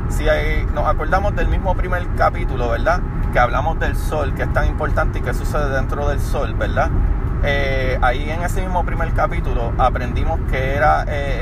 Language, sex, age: Spanish, male, 30-49